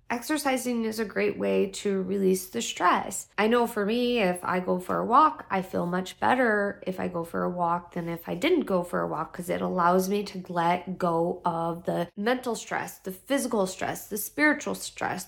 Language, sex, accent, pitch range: English, female, American, 185-250 Hz